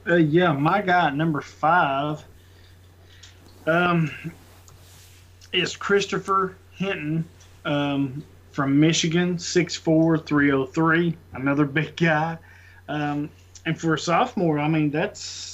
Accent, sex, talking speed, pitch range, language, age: American, male, 115 wpm, 140-165 Hz, English, 20-39